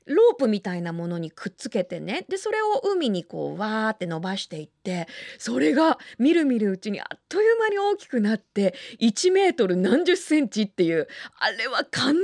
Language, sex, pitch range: Japanese, female, 200-315 Hz